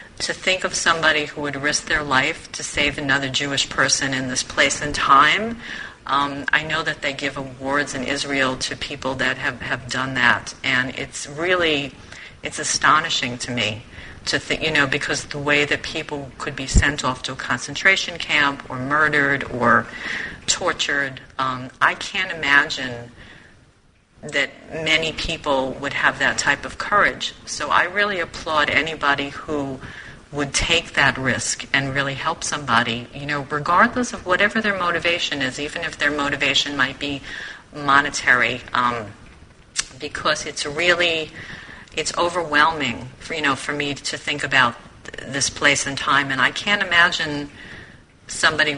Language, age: English, 40-59